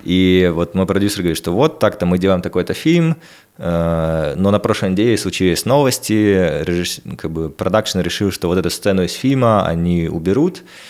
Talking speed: 165 wpm